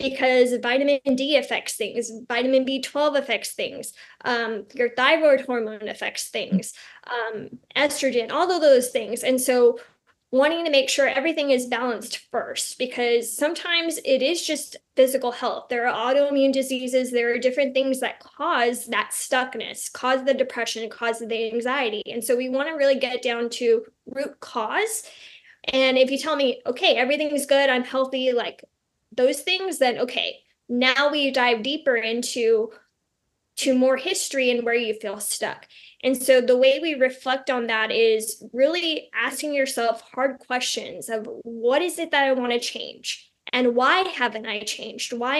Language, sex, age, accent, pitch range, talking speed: English, female, 20-39, American, 240-280 Hz, 165 wpm